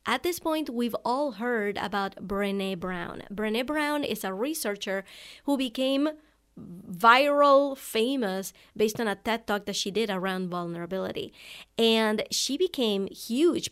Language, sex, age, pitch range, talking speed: English, female, 30-49, 205-270 Hz, 140 wpm